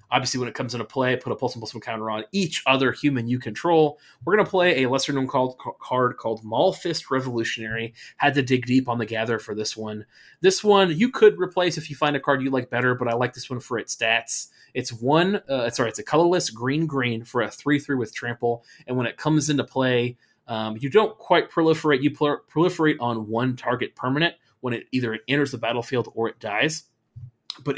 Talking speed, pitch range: 210 wpm, 115-145 Hz